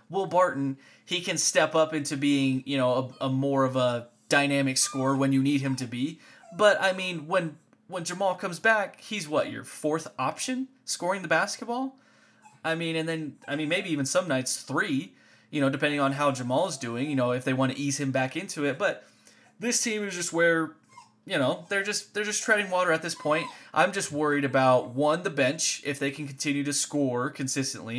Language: English